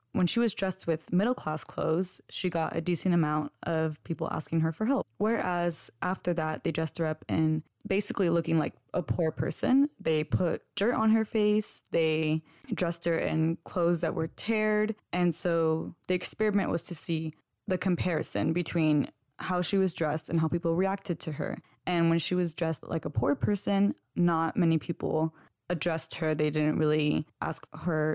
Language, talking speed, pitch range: English, 180 wpm, 160-185 Hz